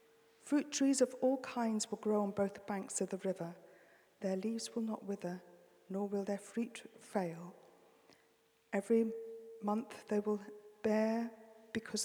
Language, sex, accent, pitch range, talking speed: English, female, British, 185-225 Hz, 145 wpm